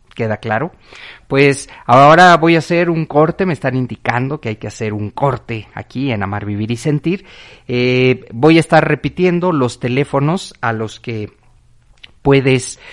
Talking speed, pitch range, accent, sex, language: 160 wpm, 115-165 Hz, Mexican, male, Spanish